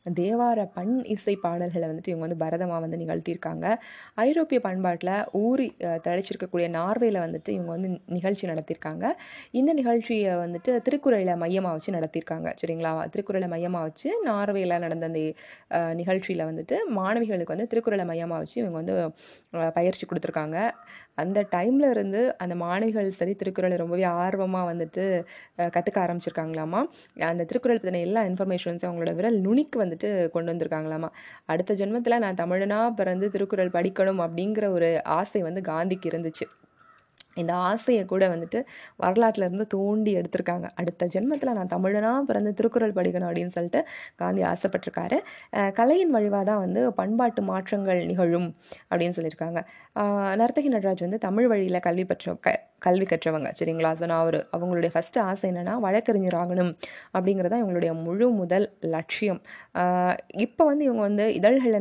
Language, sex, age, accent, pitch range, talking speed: Tamil, female, 20-39, native, 170-215 Hz, 105 wpm